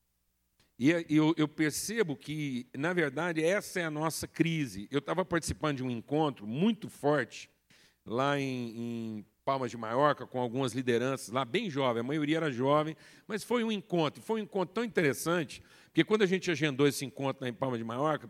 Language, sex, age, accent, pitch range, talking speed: Portuguese, male, 60-79, Brazilian, 125-170 Hz, 185 wpm